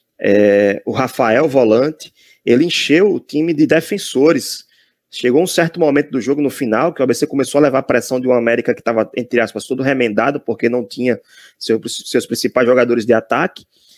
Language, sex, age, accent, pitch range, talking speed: Portuguese, male, 20-39, Brazilian, 120-155 Hz, 190 wpm